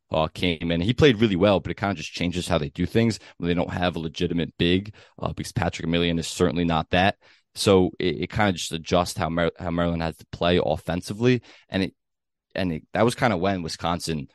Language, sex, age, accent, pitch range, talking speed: English, male, 20-39, American, 85-105 Hz, 245 wpm